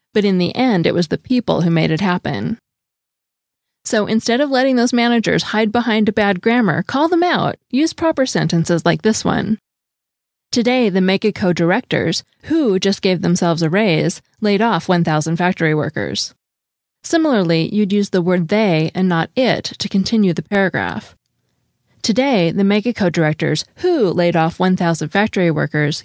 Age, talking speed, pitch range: 20-39, 160 wpm, 170-225 Hz